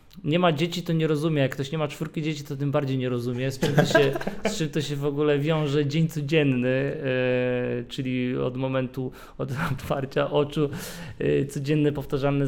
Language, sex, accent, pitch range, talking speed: Polish, male, native, 130-150 Hz, 180 wpm